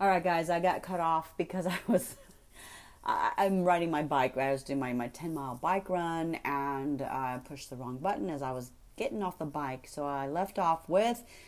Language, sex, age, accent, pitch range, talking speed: English, female, 30-49, American, 140-185 Hz, 225 wpm